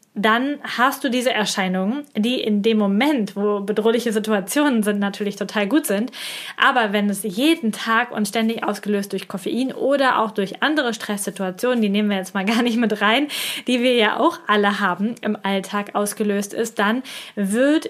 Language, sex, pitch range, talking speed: German, female, 205-245 Hz, 180 wpm